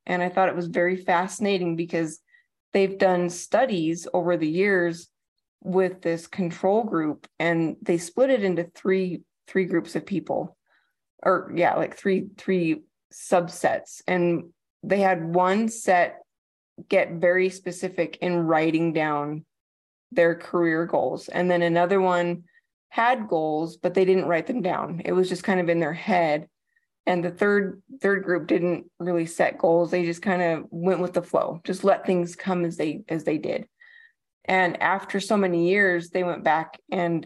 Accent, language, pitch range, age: American, English, 170-190 Hz, 20-39